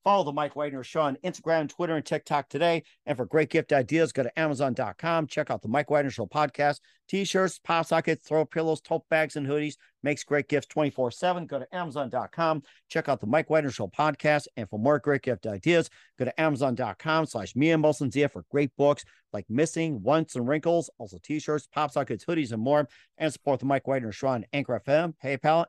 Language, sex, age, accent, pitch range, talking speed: English, male, 50-69, American, 130-155 Hz, 205 wpm